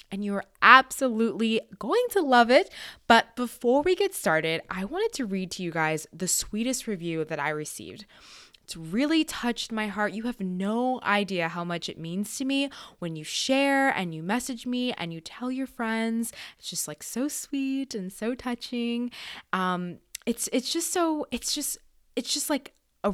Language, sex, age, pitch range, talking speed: English, female, 20-39, 170-245 Hz, 185 wpm